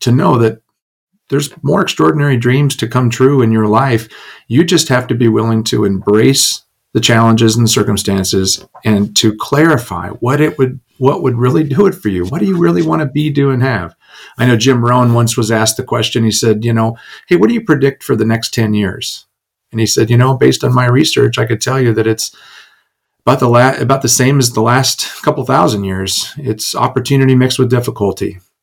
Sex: male